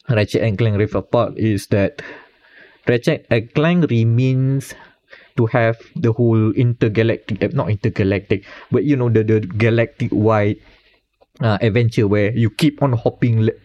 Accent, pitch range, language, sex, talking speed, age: Malaysian, 110-145 Hz, English, male, 140 wpm, 20-39